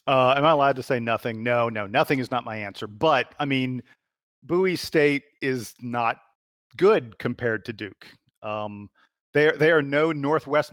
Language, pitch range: English, 115-145 Hz